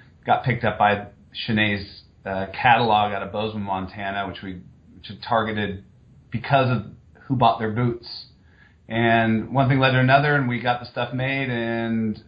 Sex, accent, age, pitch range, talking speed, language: male, American, 30-49, 95-115 Hz, 170 wpm, English